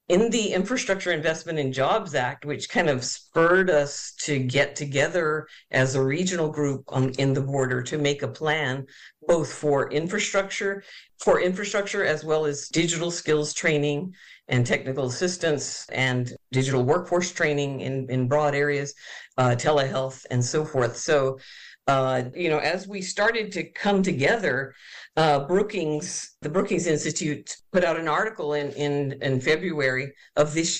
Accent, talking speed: American, 155 wpm